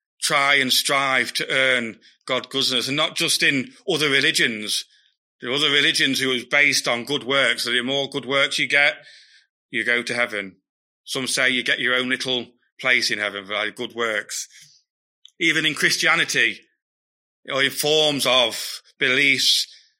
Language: English